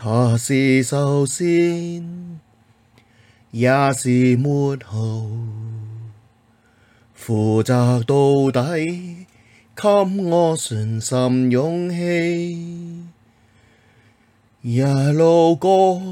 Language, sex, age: Chinese, male, 30-49